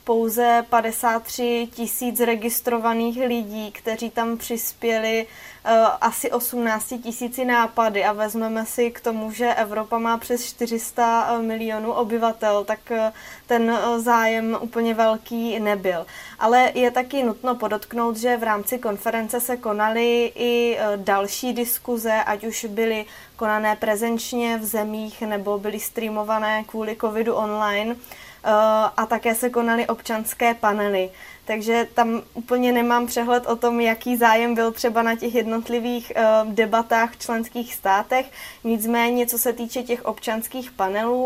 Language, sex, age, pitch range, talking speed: Czech, female, 20-39, 215-235 Hz, 130 wpm